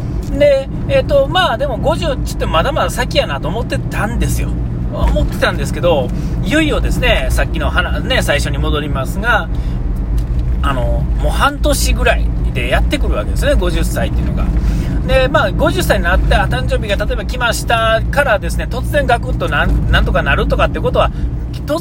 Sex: male